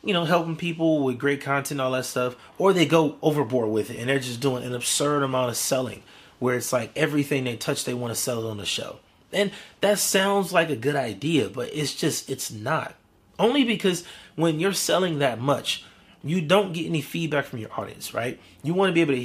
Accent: American